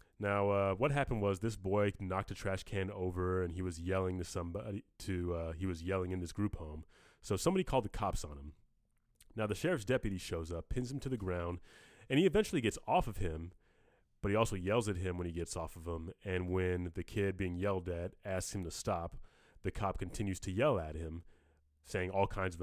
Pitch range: 90-105 Hz